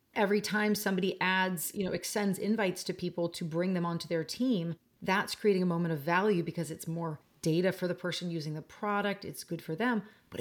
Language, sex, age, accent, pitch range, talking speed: English, female, 30-49, American, 170-205 Hz, 215 wpm